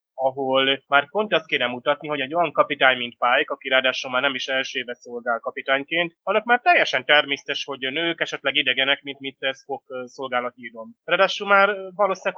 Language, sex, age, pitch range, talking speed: Hungarian, male, 20-39, 135-155 Hz, 185 wpm